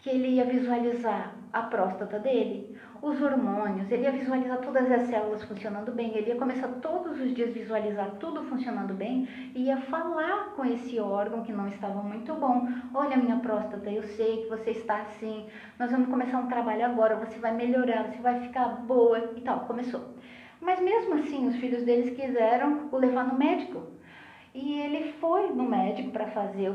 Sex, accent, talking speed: female, Brazilian, 185 wpm